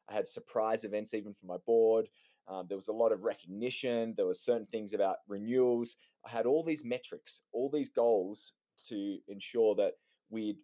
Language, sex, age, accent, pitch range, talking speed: English, male, 20-39, Australian, 110-145 Hz, 185 wpm